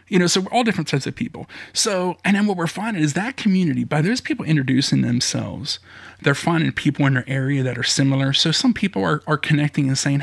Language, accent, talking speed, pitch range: English, American, 235 wpm, 130-165 Hz